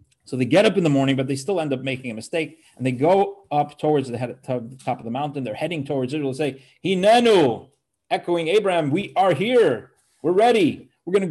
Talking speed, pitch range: 240 wpm, 125-160 Hz